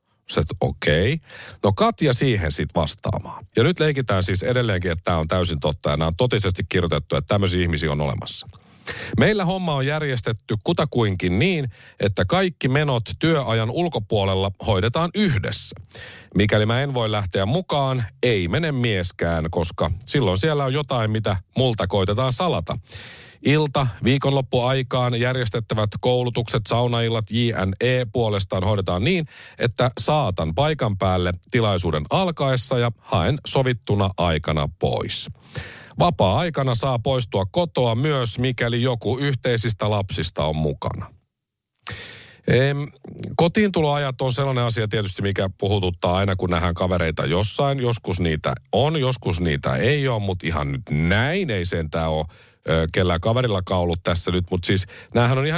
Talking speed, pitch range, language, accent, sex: 135 wpm, 90-130 Hz, Finnish, native, male